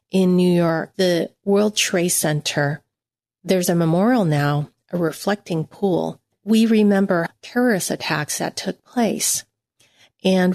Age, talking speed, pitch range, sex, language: 40-59, 125 wpm, 160-200 Hz, female, English